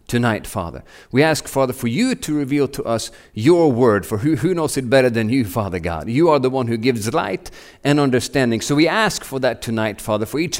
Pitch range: 105-140 Hz